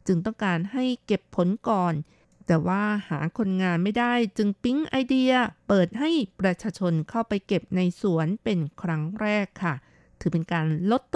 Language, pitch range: Thai, 170-220 Hz